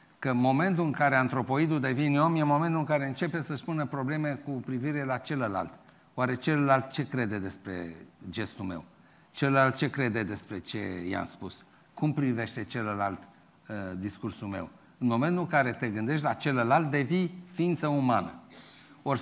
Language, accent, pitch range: Romanian, native, 130-175 Hz